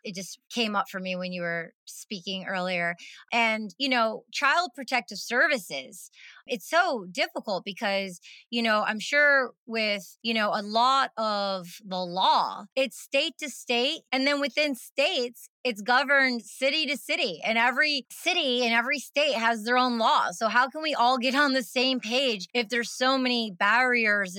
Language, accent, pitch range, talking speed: English, American, 205-260 Hz, 175 wpm